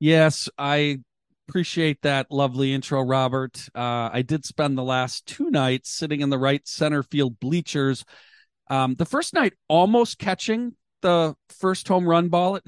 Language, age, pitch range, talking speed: English, 40-59, 115-170 Hz, 160 wpm